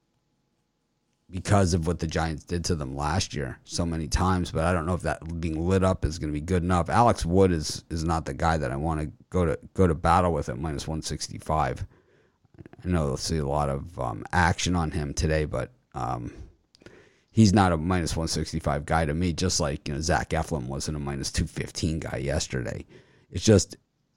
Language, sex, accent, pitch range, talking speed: English, male, American, 80-100 Hz, 220 wpm